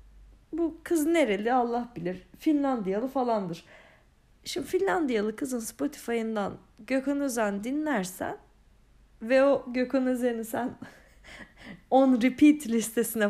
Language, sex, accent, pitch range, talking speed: Turkish, female, native, 205-290 Hz, 100 wpm